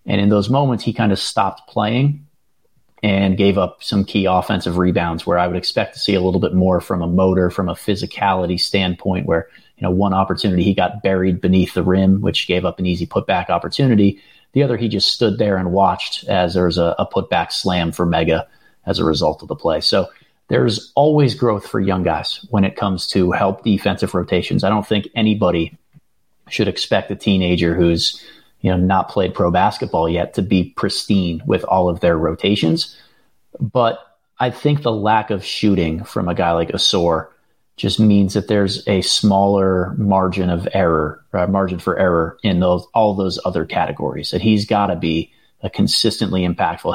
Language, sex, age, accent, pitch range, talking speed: English, male, 30-49, American, 90-105 Hz, 195 wpm